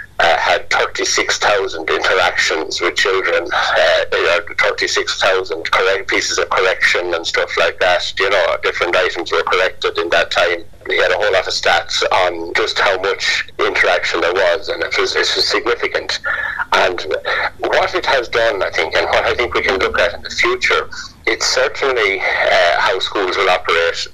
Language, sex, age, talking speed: English, male, 60-79, 180 wpm